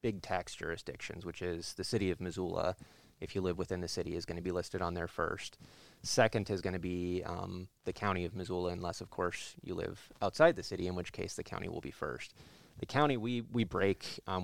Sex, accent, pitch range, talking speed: male, American, 90-100 Hz, 220 wpm